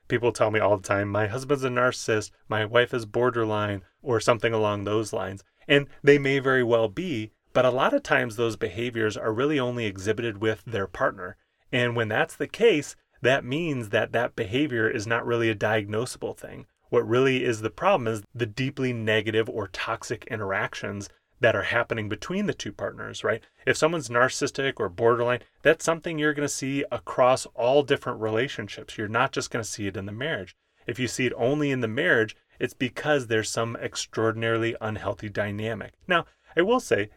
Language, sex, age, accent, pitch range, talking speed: English, male, 30-49, American, 105-125 Hz, 190 wpm